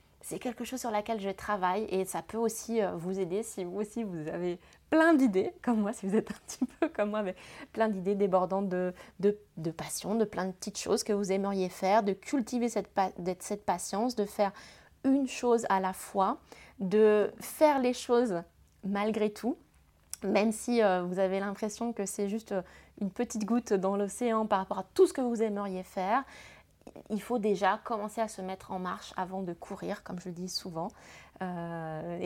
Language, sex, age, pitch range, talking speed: French, female, 20-39, 190-230 Hz, 195 wpm